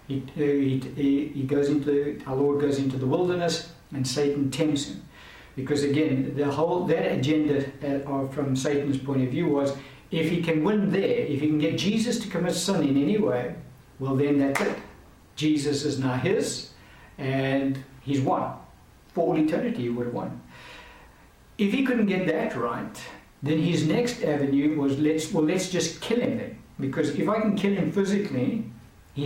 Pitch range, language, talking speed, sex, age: 135-170 Hz, English, 180 wpm, male, 60-79